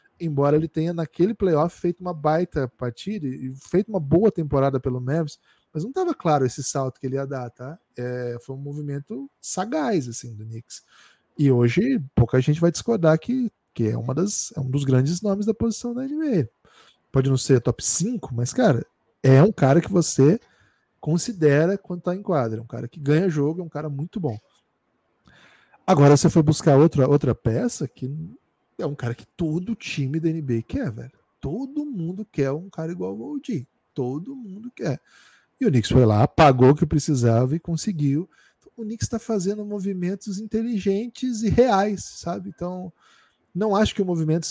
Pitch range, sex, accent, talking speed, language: 135-190 Hz, male, Brazilian, 185 wpm, Portuguese